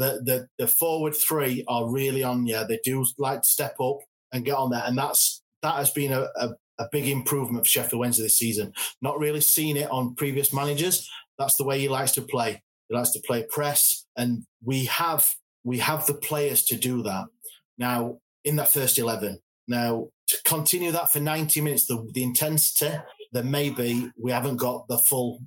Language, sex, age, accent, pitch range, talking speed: English, male, 30-49, British, 120-145 Hz, 200 wpm